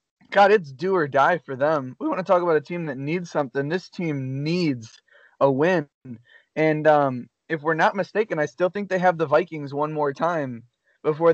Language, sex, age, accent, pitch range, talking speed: English, male, 20-39, American, 140-165 Hz, 205 wpm